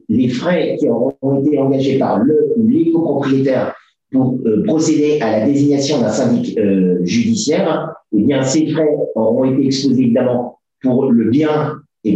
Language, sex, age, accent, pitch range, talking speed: French, male, 50-69, French, 125-155 Hz, 170 wpm